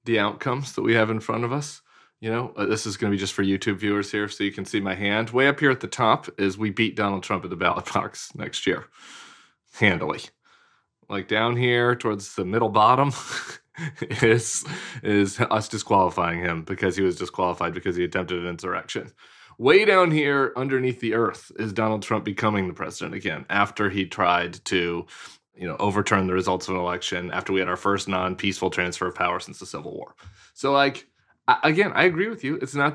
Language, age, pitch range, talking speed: English, 30-49, 100-140 Hz, 210 wpm